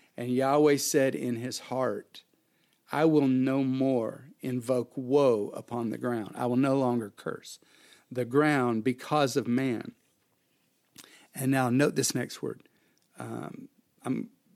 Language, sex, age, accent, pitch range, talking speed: English, male, 50-69, American, 120-155 Hz, 130 wpm